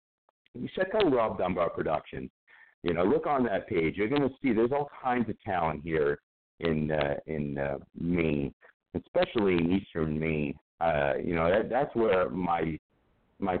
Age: 50-69